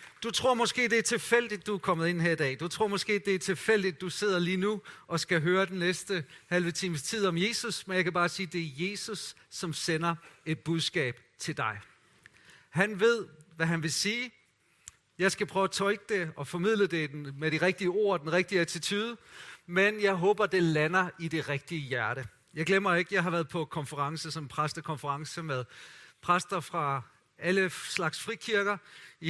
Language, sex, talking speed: Danish, male, 190 wpm